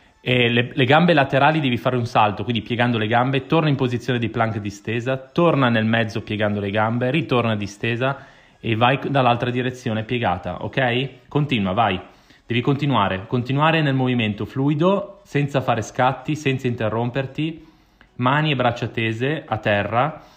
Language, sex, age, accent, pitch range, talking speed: Italian, male, 30-49, native, 110-135 Hz, 150 wpm